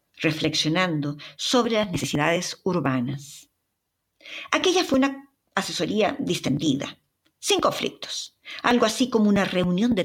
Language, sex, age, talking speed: Spanish, female, 50-69, 105 wpm